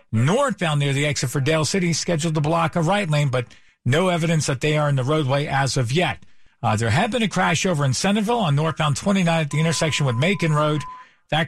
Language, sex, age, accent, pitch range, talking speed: English, male, 50-69, American, 135-170 Hz, 230 wpm